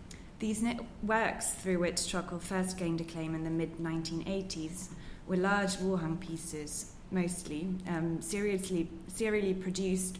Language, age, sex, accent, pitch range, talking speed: English, 20-39, female, British, 160-185 Hz, 135 wpm